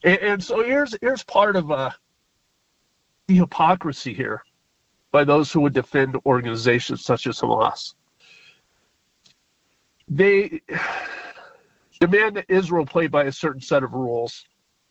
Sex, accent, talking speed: male, American, 120 wpm